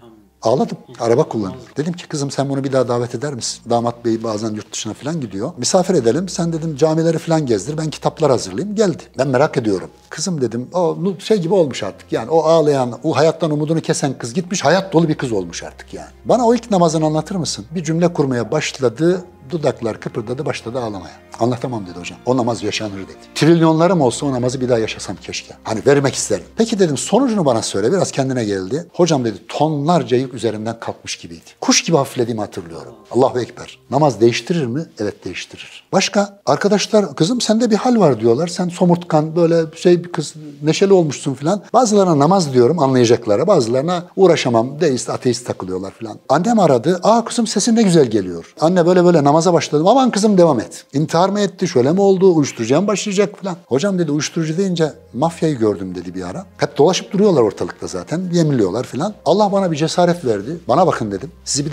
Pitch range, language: 120-180 Hz, Turkish